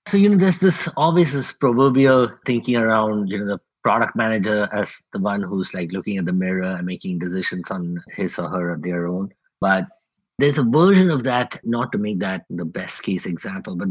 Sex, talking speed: male, 205 wpm